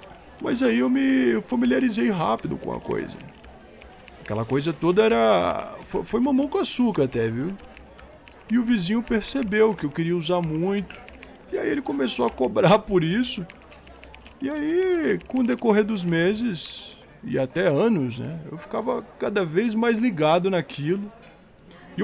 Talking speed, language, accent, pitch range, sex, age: 150 wpm, Portuguese, Brazilian, 145-230 Hz, male, 20-39